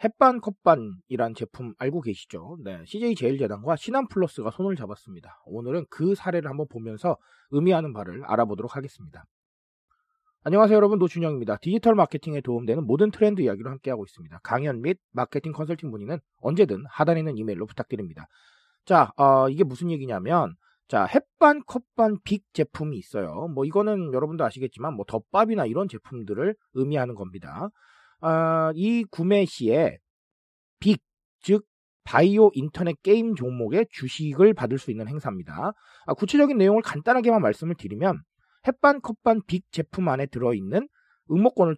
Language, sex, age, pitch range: Korean, male, 40-59, 130-210 Hz